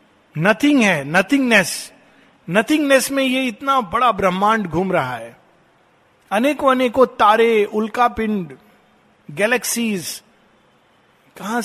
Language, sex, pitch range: Hindi, male, 165-215 Hz